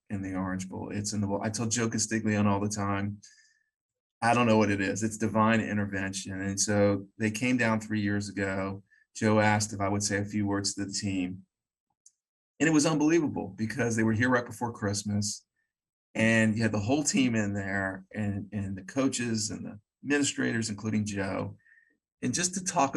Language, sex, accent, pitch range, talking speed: English, male, American, 100-110 Hz, 195 wpm